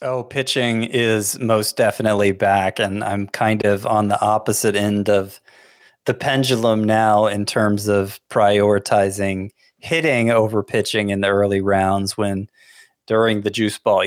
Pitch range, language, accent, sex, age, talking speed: 100-125 Hz, English, American, male, 20-39, 145 wpm